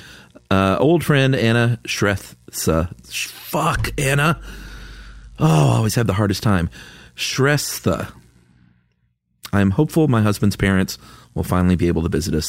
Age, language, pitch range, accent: 40-59, English, 80-115 Hz, American